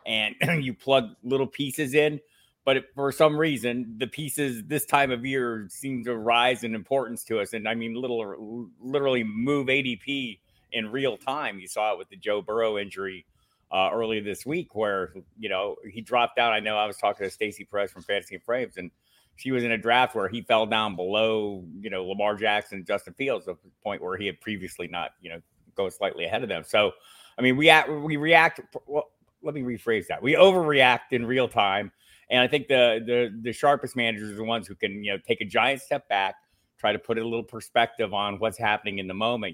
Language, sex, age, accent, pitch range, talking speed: English, male, 30-49, American, 105-135 Hz, 220 wpm